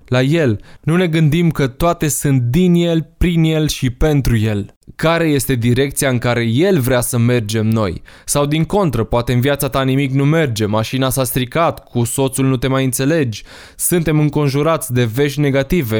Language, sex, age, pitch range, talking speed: Romanian, male, 20-39, 125-155 Hz, 185 wpm